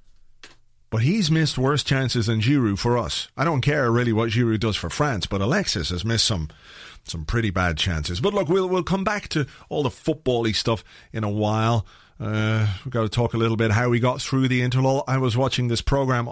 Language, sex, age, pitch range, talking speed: English, male, 40-59, 115-145 Hz, 220 wpm